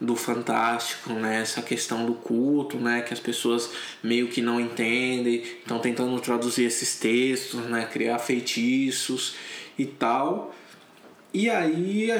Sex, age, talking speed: male, 20-39, 140 wpm